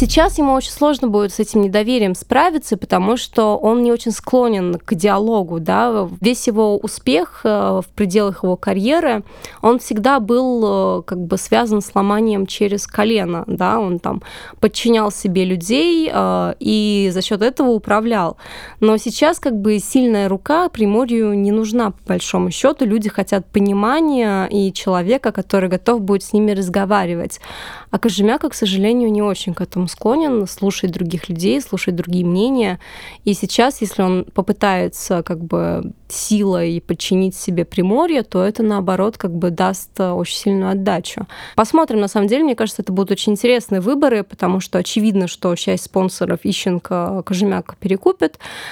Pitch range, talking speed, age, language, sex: 190-230 Hz, 155 wpm, 20-39, Russian, female